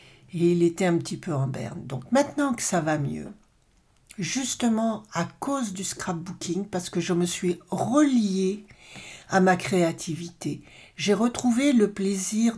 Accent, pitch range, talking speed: French, 170-210 Hz, 155 wpm